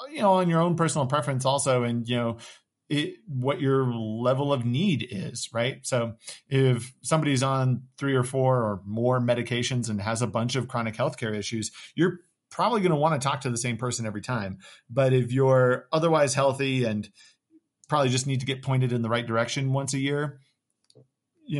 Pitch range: 115-135 Hz